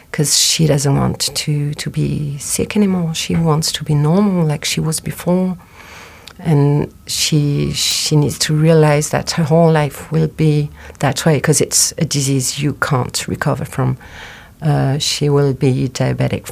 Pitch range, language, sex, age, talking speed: 135-150 Hz, English, female, 40-59, 165 wpm